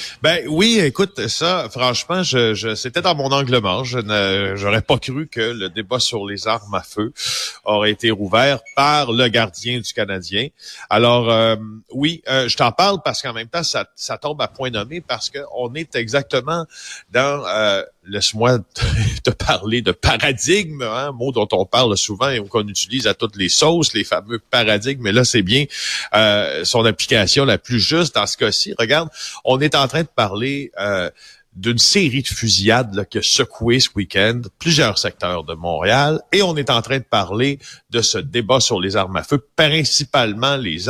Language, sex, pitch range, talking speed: French, male, 105-145 Hz, 190 wpm